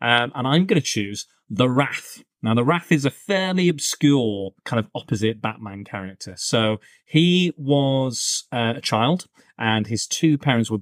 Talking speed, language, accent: 170 wpm, English, British